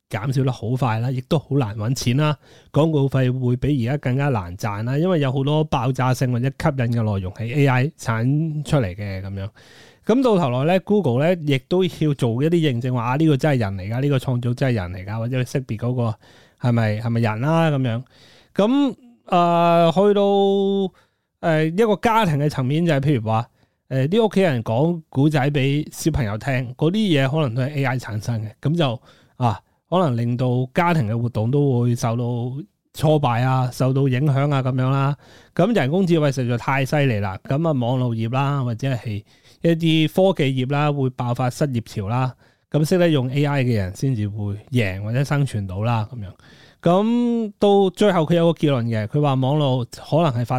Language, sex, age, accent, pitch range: Chinese, male, 20-39, native, 120-155 Hz